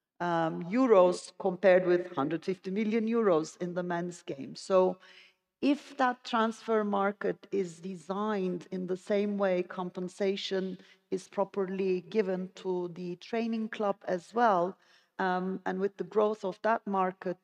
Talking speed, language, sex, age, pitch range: 140 wpm, English, female, 40-59, 185-205 Hz